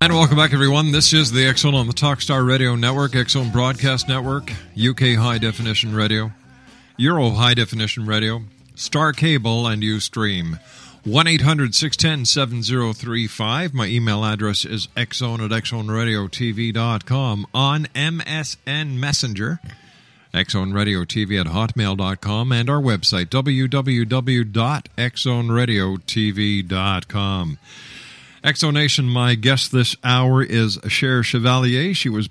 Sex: male